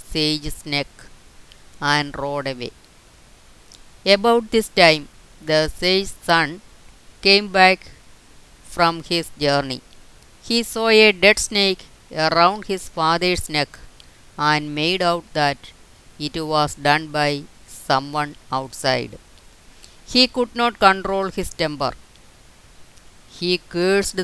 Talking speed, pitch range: 105 wpm, 140-180 Hz